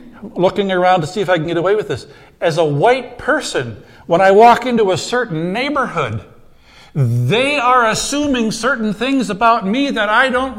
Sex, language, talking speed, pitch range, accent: male, English, 180 wpm, 155-235 Hz, American